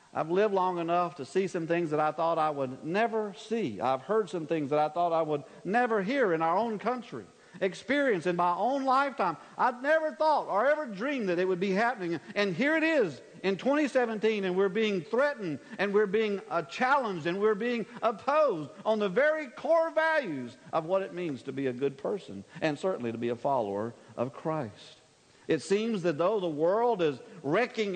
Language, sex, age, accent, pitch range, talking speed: English, male, 50-69, American, 160-245 Hz, 205 wpm